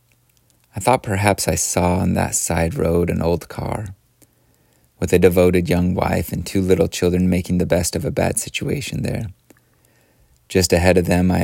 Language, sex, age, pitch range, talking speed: English, male, 30-49, 85-105 Hz, 180 wpm